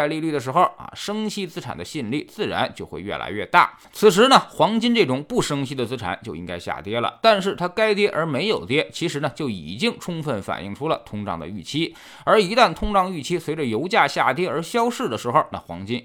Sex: male